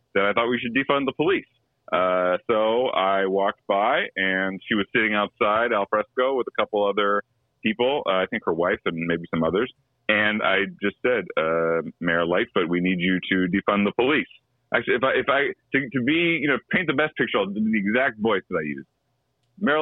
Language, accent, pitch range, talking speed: English, American, 100-155 Hz, 210 wpm